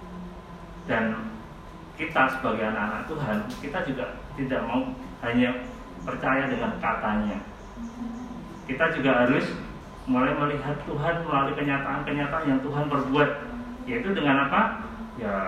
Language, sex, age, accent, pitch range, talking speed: Indonesian, male, 30-49, native, 105-145 Hz, 110 wpm